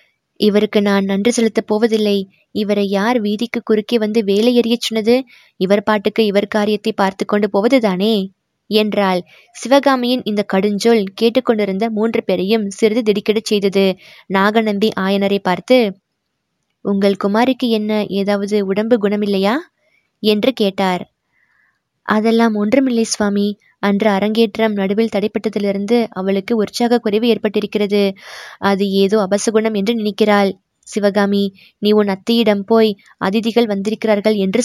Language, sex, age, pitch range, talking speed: Tamil, female, 20-39, 200-230 Hz, 115 wpm